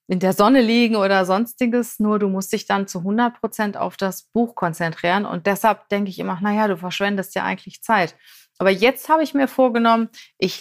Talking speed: 200 wpm